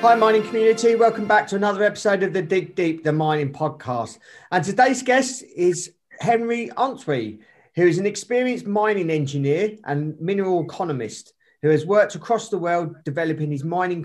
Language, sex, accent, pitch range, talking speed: English, male, British, 140-185 Hz, 165 wpm